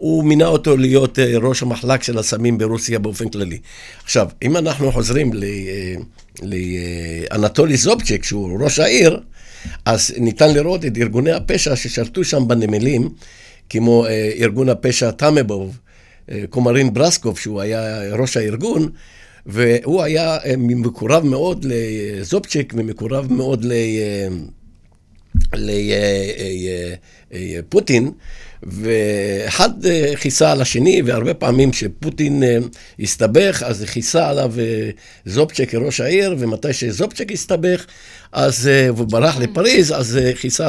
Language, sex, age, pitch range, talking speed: Hebrew, male, 60-79, 105-140 Hz, 115 wpm